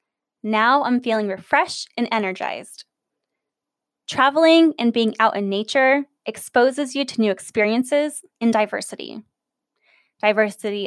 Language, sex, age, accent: English, female, 10-29, American